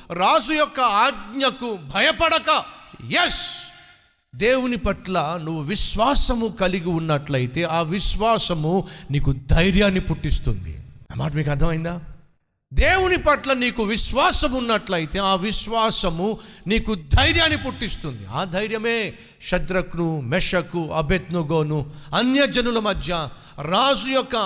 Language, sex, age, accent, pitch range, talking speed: Telugu, male, 50-69, native, 140-220 Hz, 65 wpm